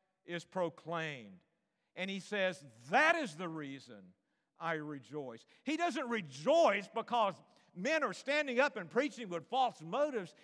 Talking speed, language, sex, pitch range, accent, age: 140 wpm, English, male, 155-225 Hz, American, 50-69